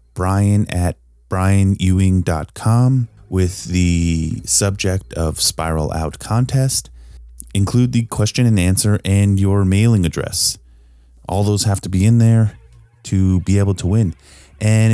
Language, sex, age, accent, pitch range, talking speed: English, male, 30-49, American, 85-115 Hz, 130 wpm